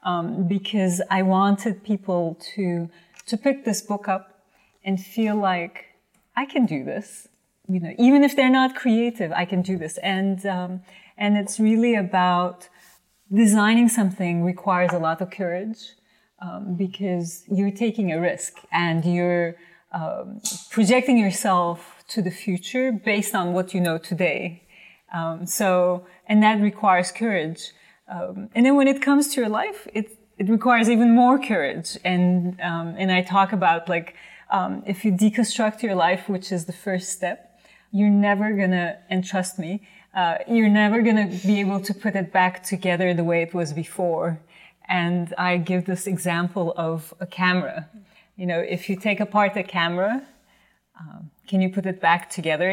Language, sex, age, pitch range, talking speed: English, female, 30-49, 180-215 Hz, 170 wpm